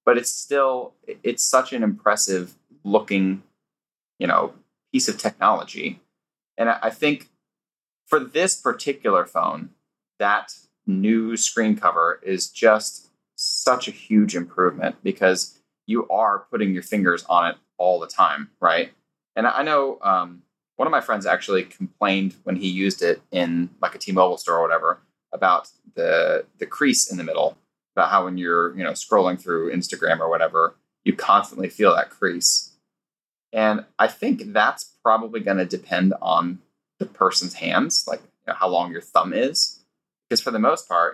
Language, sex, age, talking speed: English, male, 20-39, 160 wpm